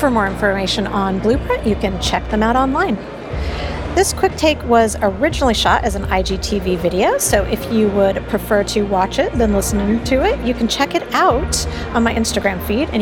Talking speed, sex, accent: 200 wpm, female, American